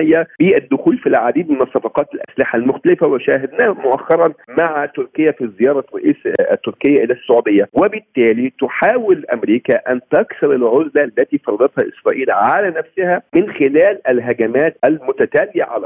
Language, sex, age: Arabic, male, 50-69